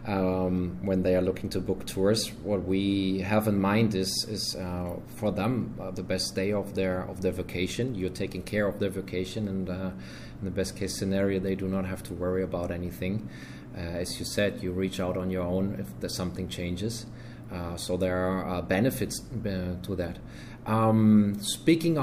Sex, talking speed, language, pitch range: male, 200 wpm, English, 95-110 Hz